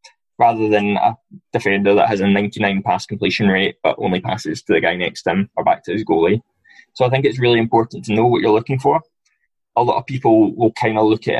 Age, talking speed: 20-39, 240 wpm